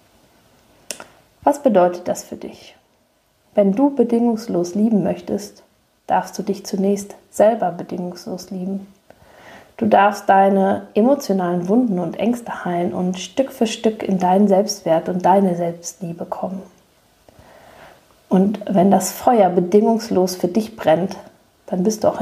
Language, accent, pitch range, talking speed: German, German, 175-205 Hz, 130 wpm